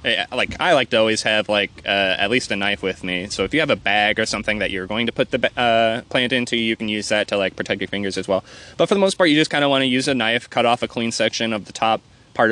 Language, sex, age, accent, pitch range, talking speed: English, male, 20-39, American, 100-130 Hz, 310 wpm